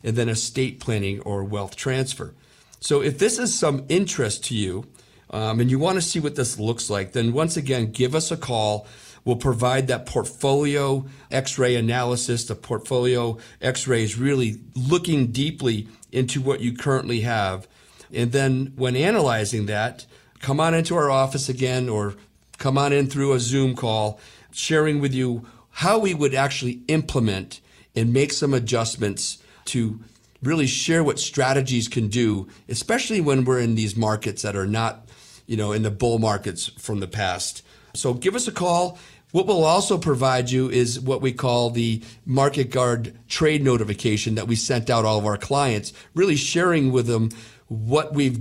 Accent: American